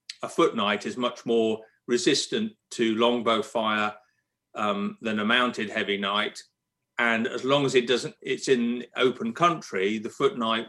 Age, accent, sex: 40-59, British, male